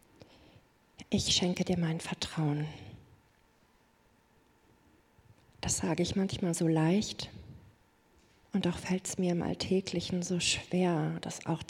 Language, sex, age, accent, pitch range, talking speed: German, female, 40-59, German, 155-180 Hz, 115 wpm